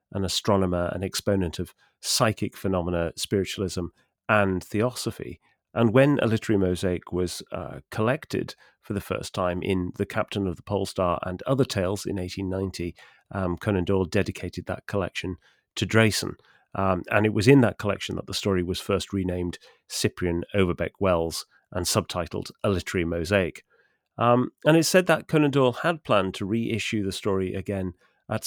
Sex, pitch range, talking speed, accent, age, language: male, 90-110 Hz, 160 wpm, British, 30-49, English